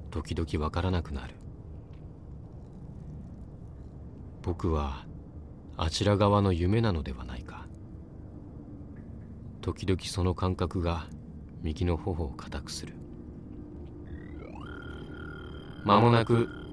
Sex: male